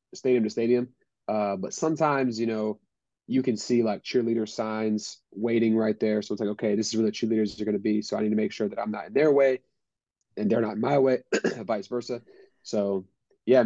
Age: 30-49